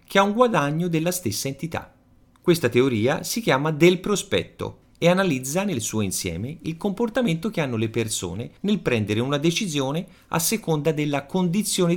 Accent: native